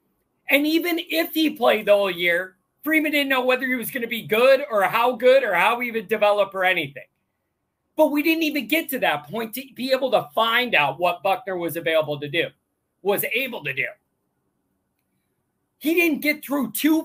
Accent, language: American, English